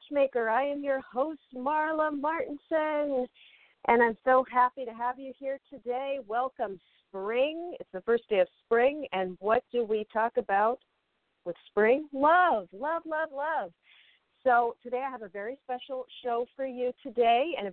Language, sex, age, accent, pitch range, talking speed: English, female, 50-69, American, 185-260 Hz, 165 wpm